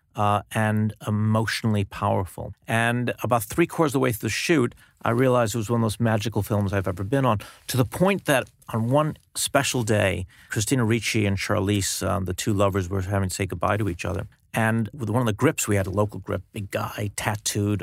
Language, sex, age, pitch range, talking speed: English, male, 50-69, 105-125 Hz, 220 wpm